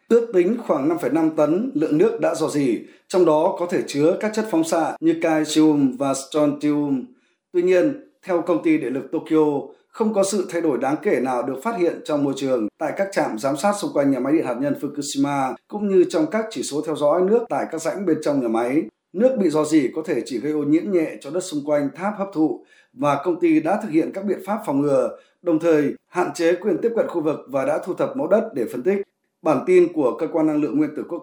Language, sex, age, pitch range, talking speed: Vietnamese, male, 20-39, 150-225 Hz, 255 wpm